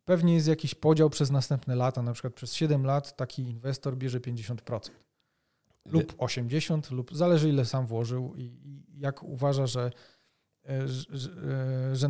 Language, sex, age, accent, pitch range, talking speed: Polish, male, 40-59, native, 130-160 Hz, 140 wpm